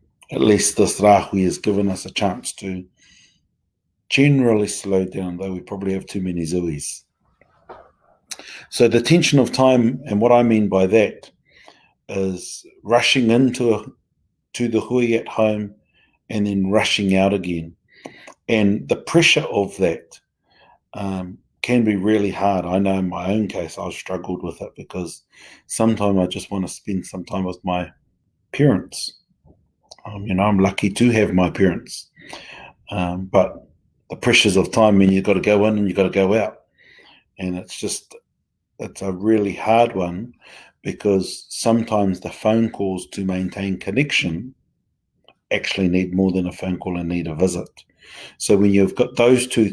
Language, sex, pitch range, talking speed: English, male, 95-110 Hz, 165 wpm